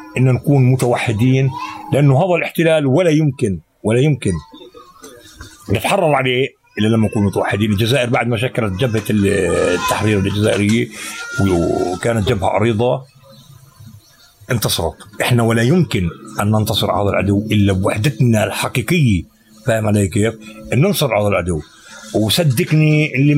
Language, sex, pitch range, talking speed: Arabic, male, 115-165 Hz, 120 wpm